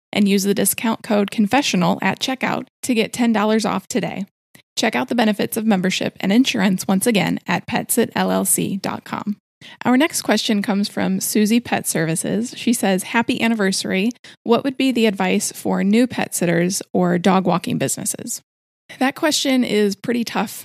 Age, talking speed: 20-39, 160 wpm